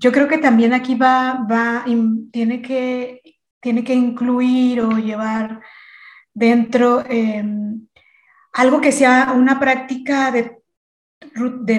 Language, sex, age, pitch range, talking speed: Spanish, female, 30-49, 220-255 Hz, 115 wpm